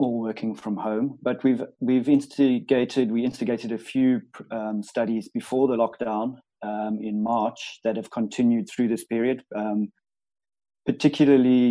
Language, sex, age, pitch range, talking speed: English, male, 30-49, 105-120 Hz, 145 wpm